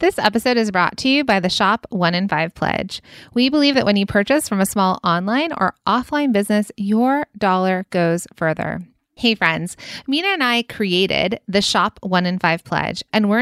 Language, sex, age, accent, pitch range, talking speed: English, female, 30-49, American, 180-240 Hz, 195 wpm